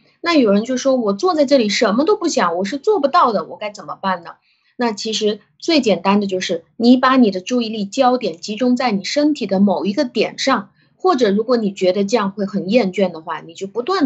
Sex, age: female, 20-39